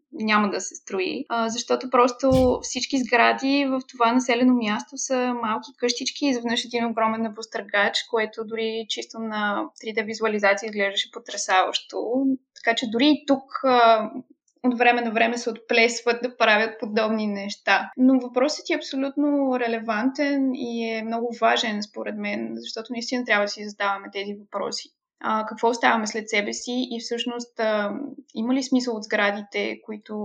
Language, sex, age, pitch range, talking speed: Bulgarian, female, 20-39, 220-255 Hz, 145 wpm